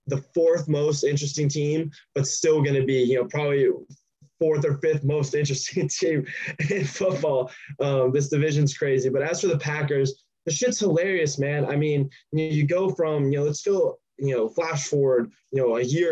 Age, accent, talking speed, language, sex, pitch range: 20-39, American, 190 wpm, English, male, 130-160 Hz